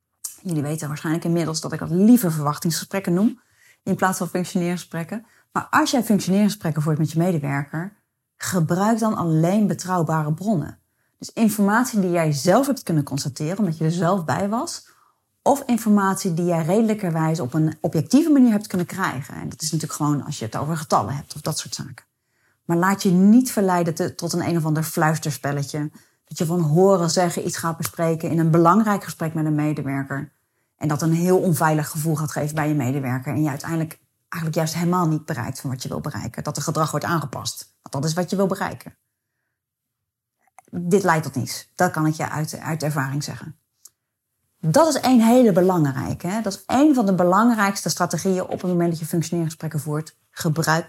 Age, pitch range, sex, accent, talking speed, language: 30-49, 150-185 Hz, female, Dutch, 190 wpm, Dutch